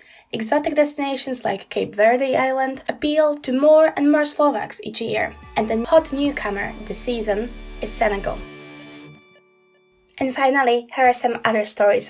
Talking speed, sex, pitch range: 145 wpm, female, 210-265 Hz